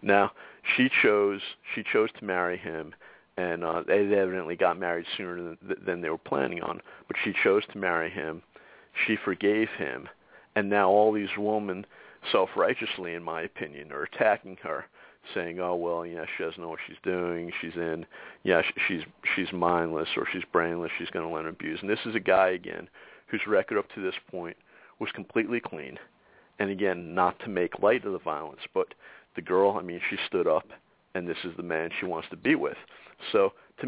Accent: American